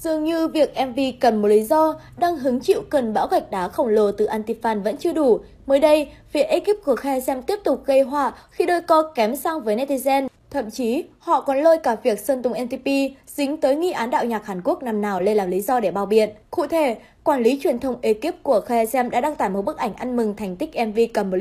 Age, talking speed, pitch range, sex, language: 20-39, 245 wpm, 225-300 Hz, female, Vietnamese